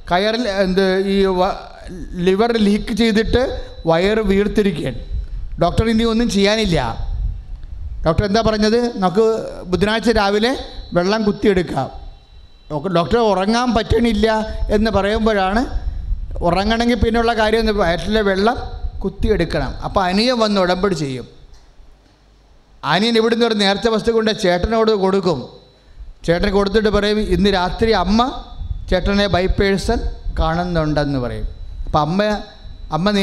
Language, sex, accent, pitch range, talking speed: English, male, Indian, 165-220 Hz, 90 wpm